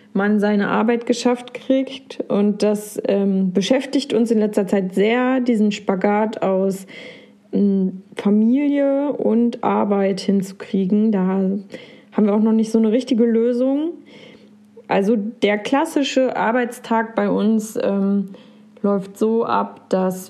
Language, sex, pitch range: German, female, 195-235 Hz